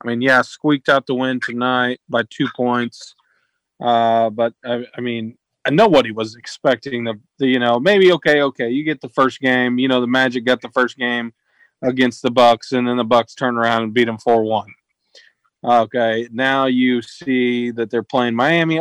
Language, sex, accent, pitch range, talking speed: English, male, American, 120-140 Hz, 200 wpm